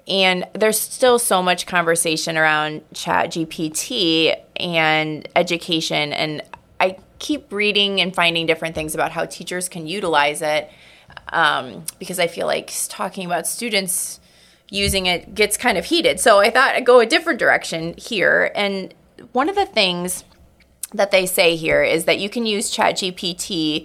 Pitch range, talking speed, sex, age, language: 165-225 Hz, 160 wpm, female, 20-39, English